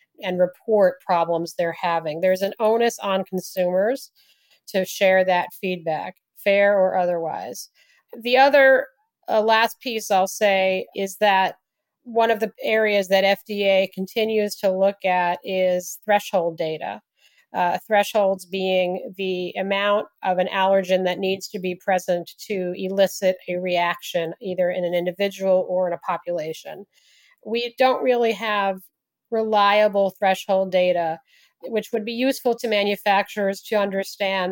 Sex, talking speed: female, 135 wpm